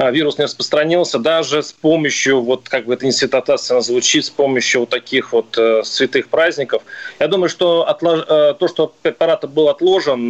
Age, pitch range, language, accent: 20-39, 140-180 Hz, Russian, native